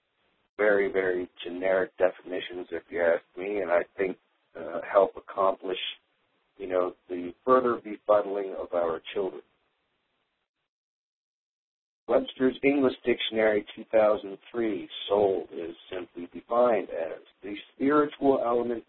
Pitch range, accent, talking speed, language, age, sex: 100-125 Hz, American, 110 wpm, English, 50-69, male